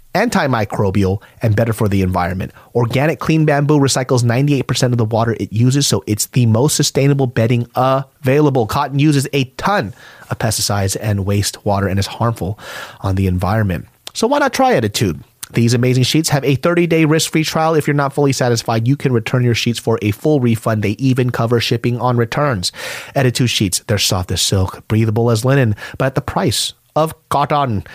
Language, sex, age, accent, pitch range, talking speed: English, male, 30-49, American, 105-140 Hz, 185 wpm